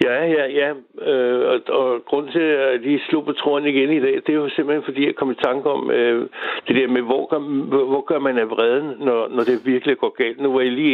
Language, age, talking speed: Danish, 60-79, 265 wpm